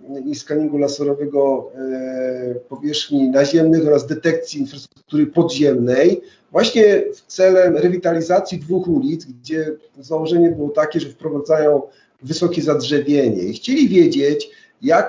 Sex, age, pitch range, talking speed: male, 40-59, 140-165 Hz, 110 wpm